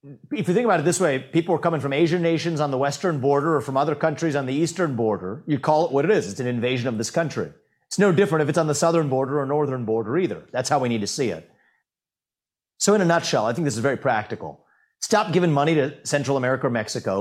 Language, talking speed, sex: English, 260 wpm, male